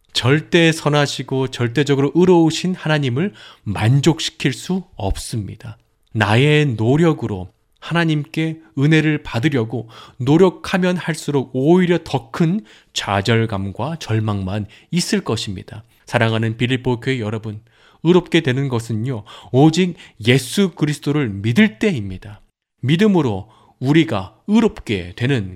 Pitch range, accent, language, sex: 110-150 Hz, native, Korean, male